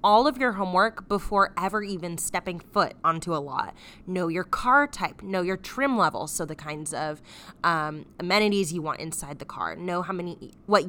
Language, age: English, 20-39